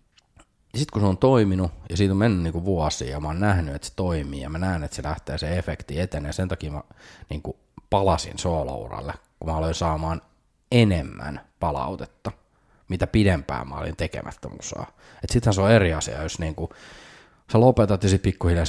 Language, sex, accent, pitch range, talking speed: English, male, Finnish, 80-105 Hz, 180 wpm